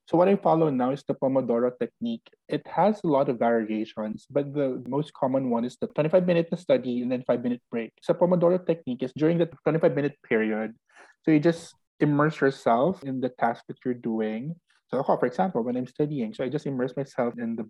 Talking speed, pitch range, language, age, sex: 210 wpm, 120-155 Hz, Filipino, 20-39, male